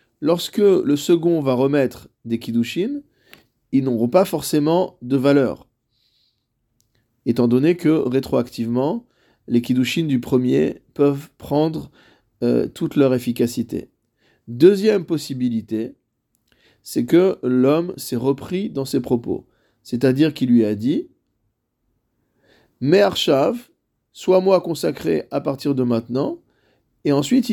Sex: male